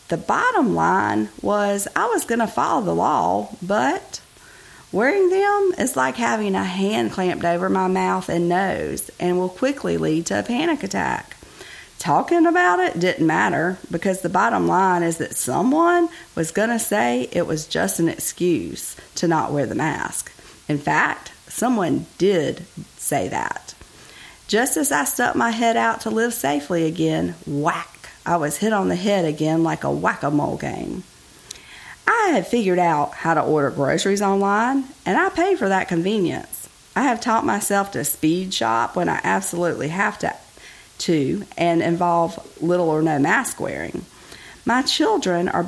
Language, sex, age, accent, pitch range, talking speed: English, female, 40-59, American, 165-225 Hz, 165 wpm